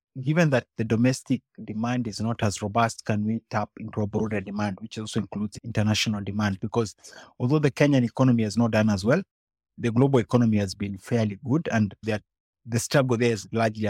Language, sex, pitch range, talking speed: English, male, 100-120 Hz, 190 wpm